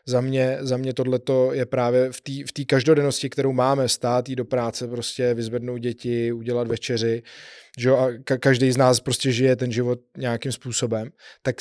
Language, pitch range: Czech, 120-135 Hz